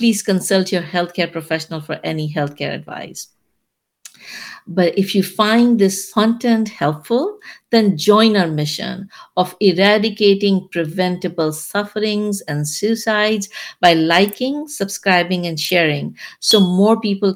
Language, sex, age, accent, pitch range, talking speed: English, female, 60-79, Indian, 165-210 Hz, 120 wpm